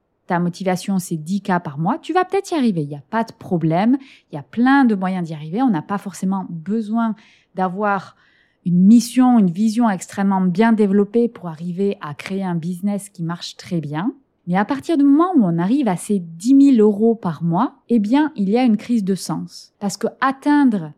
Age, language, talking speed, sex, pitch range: 20-39, French, 215 wpm, female, 185-250 Hz